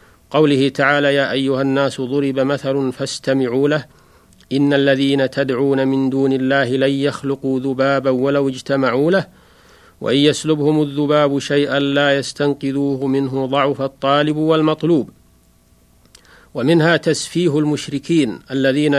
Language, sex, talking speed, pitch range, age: Arabic, male, 110 wpm, 135-145 Hz, 40-59